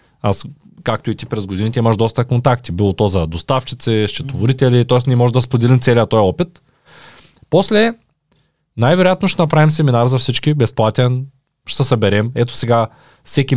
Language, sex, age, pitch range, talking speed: Bulgarian, male, 20-39, 115-150 Hz, 160 wpm